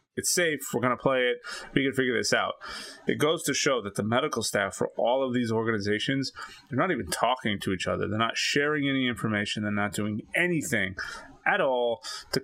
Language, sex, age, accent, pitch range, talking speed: English, male, 30-49, American, 105-135 Hz, 210 wpm